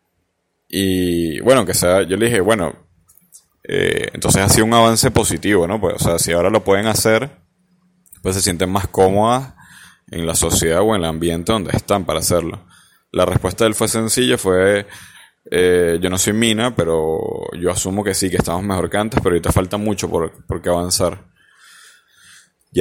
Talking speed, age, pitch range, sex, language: 185 wpm, 20-39, 95-115 Hz, male, Spanish